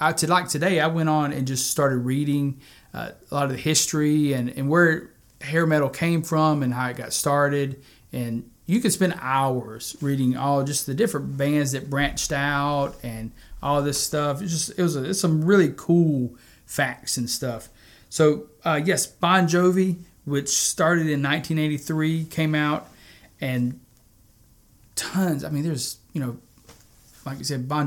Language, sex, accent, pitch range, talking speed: English, male, American, 125-155 Hz, 175 wpm